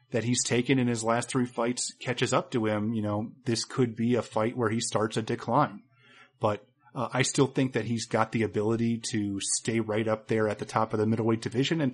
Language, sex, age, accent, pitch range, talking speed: English, male, 30-49, American, 110-135 Hz, 235 wpm